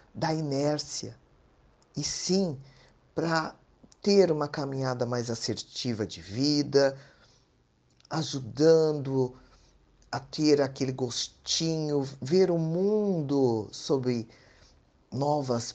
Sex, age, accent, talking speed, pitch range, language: male, 50-69, Brazilian, 85 wpm, 120-155 Hz, Portuguese